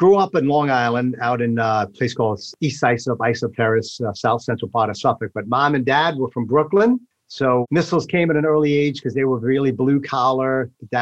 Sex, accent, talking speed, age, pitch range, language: male, American, 220 wpm, 50-69, 115-135 Hz, English